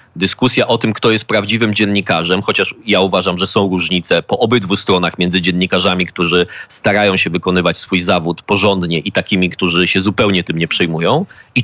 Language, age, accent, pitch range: Polish, 20-39, native, 100-130 Hz